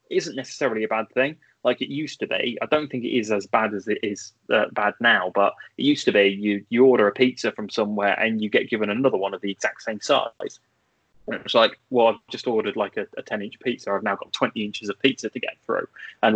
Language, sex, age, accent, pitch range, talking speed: English, male, 20-39, British, 110-135 Hz, 255 wpm